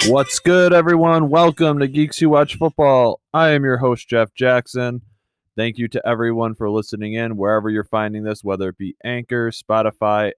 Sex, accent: male, American